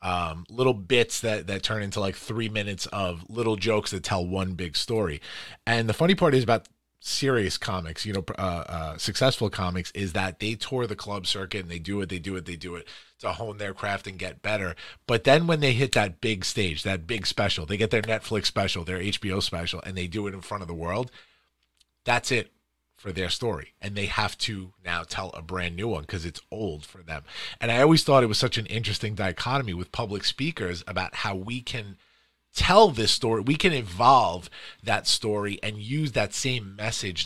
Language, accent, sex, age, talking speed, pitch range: English, American, male, 30-49, 215 wpm, 95-120 Hz